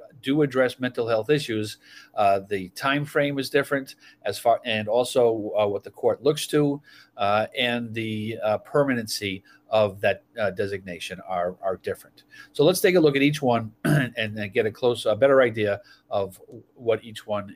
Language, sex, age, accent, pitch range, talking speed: English, male, 40-59, American, 110-140 Hz, 180 wpm